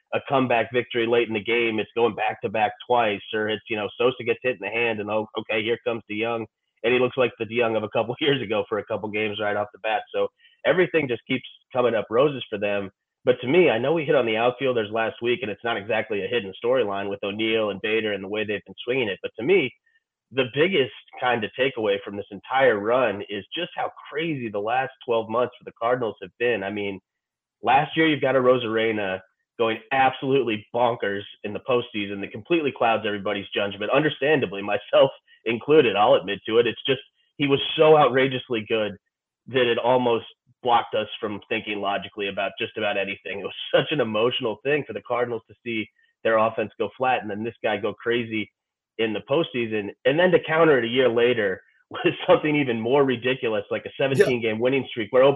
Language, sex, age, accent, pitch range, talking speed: English, male, 30-49, American, 105-135 Hz, 220 wpm